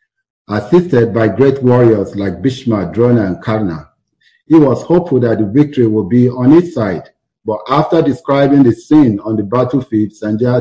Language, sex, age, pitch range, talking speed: English, male, 50-69, 110-140 Hz, 165 wpm